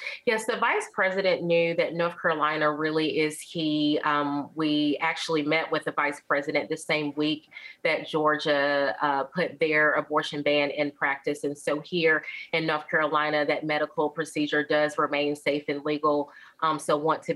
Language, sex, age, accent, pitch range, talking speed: English, female, 30-49, American, 150-165 Hz, 170 wpm